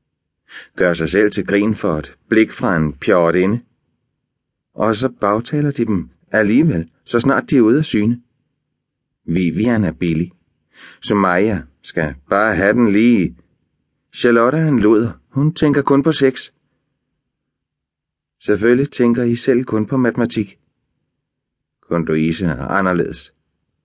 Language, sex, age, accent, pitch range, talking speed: Danish, male, 30-49, native, 80-120 Hz, 140 wpm